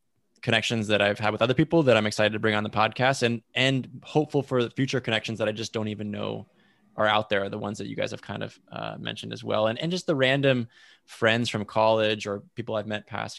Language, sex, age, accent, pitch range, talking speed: English, male, 20-39, American, 105-120 Hz, 250 wpm